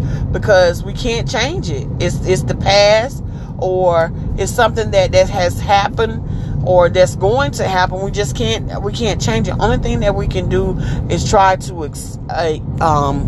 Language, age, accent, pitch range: English, 40-59, American, 120-195 Hz